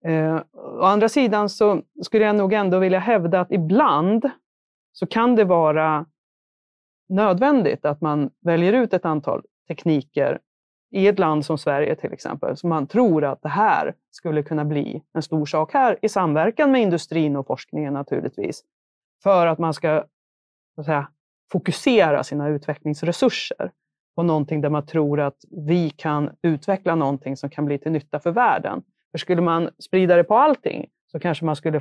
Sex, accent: female, native